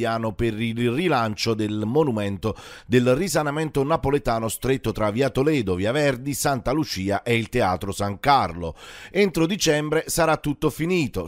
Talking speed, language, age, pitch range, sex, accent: 140 wpm, Italian, 30-49, 115-160 Hz, male, native